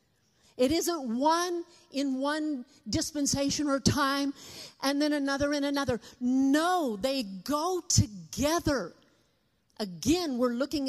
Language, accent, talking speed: English, American, 110 wpm